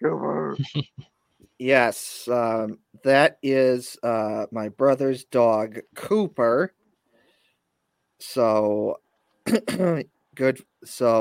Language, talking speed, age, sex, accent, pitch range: English, 65 wpm, 30-49, male, American, 115-135 Hz